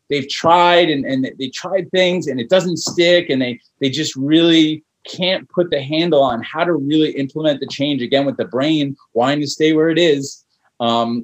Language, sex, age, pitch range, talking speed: English, male, 30-49, 125-155 Hz, 205 wpm